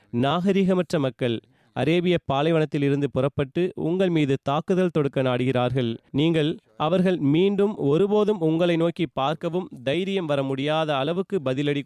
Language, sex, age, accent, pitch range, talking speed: Tamil, male, 30-49, native, 135-165 Hz, 110 wpm